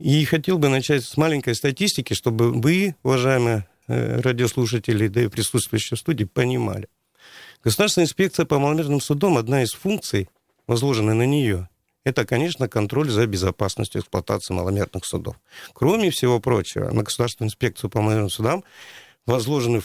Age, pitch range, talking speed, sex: 50-69, 105-145 Hz, 140 wpm, male